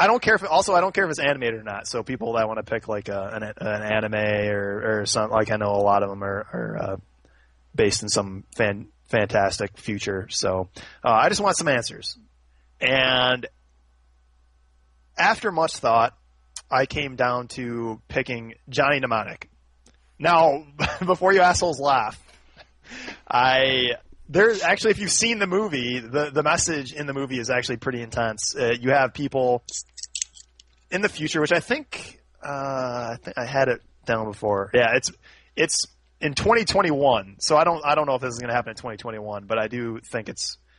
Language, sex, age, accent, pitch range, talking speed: English, male, 20-39, American, 100-135 Hz, 185 wpm